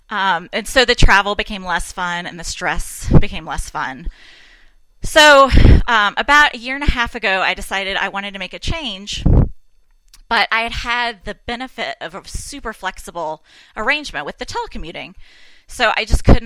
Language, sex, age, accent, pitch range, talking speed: English, female, 20-39, American, 185-235 Hz, 180 wpm